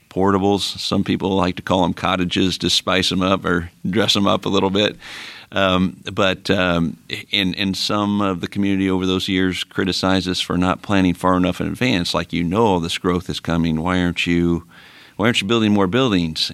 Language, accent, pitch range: English, American, 85-95 Hz